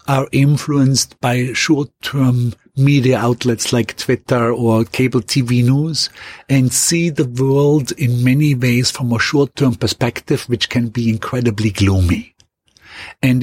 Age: 50-69